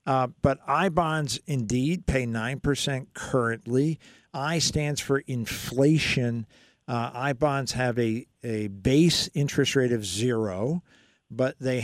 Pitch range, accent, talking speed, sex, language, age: 115-140 Hz, American, 125 wpm, male, English, 50-69